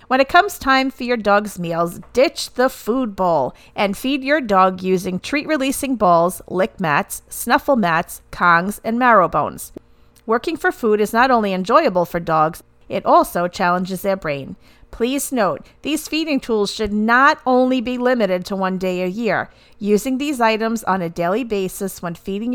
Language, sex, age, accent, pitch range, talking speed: English, female, 40-59, American, 185-245 Hz, 175 wpm